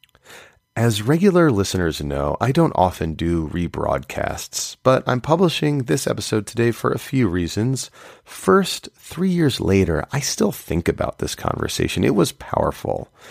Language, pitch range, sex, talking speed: English, 90-125 Hz, male, 145 wpm